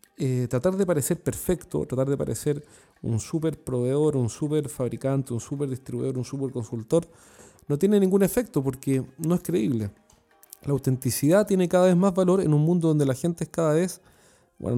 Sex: male